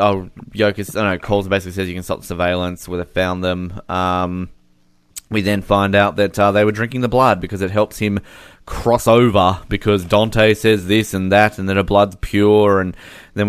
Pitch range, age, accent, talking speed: 95-125 Hz, 20-39, Australian, 220 wpm